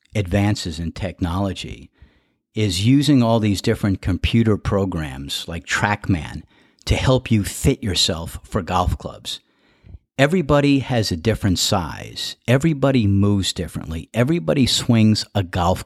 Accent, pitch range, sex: American, 95-120 Hz, male